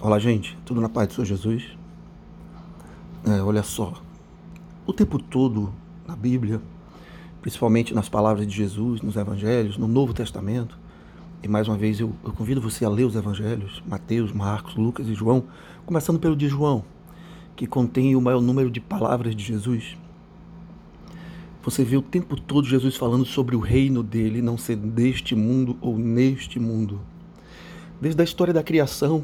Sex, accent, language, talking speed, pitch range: male, Brazilian, Portuguese, 160 wpm, 115-155 Hz